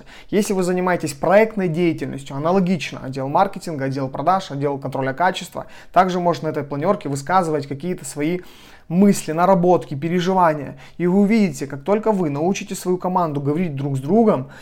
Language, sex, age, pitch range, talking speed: Russian, male, 30-49, 155-200 Hz, 150 wpm